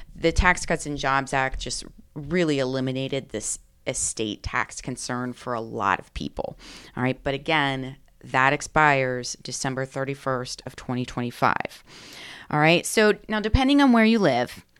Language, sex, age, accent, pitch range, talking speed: English, female, 30-49, American, 135-175 Hz, 150 wpm